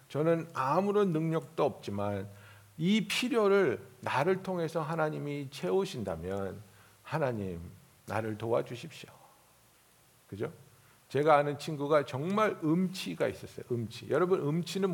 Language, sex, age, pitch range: Korean, male, 60-79, 130-205 Hz